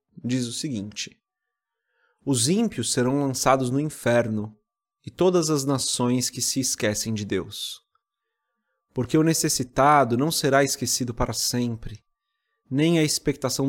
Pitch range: 110-145 Hz